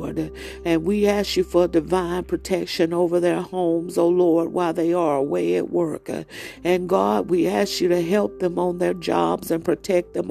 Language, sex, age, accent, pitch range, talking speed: English, female, 50-69, American, 165-185 Hz, 190 wpm